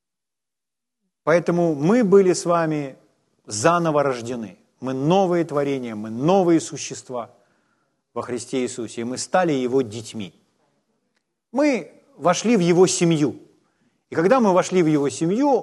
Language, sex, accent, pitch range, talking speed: Ukrainian, male, native, 140-195 Hz, 125 wpm